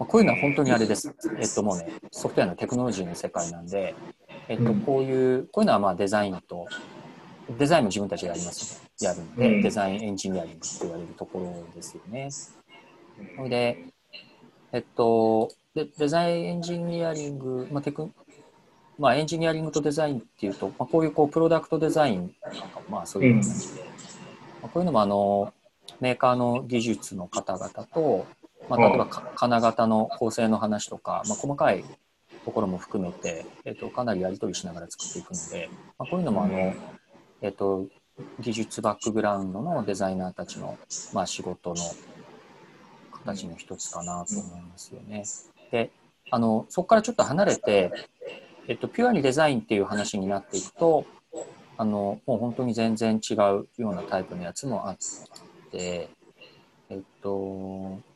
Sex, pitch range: male, 100-155 Hz